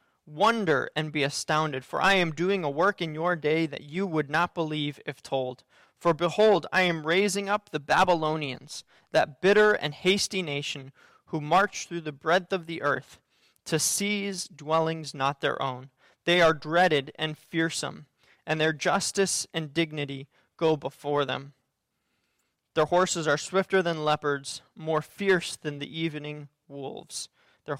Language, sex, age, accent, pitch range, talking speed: English, male, 20-39, American, 150-195 Hz, 160 wpm